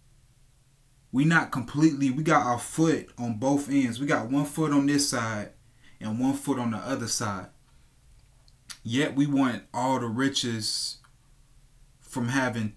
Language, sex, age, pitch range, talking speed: English, male, 20-39, 110-130 Hz, 150 wpm